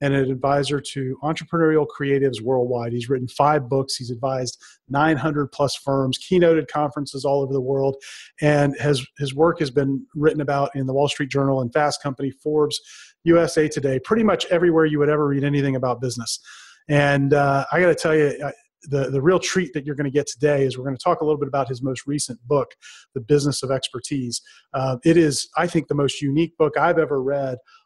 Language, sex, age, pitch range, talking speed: English, male, 30-49, 135-155 Hz, 205 wpm